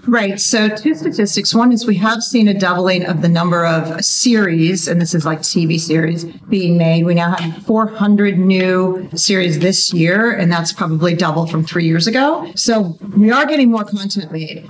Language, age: English, 50-69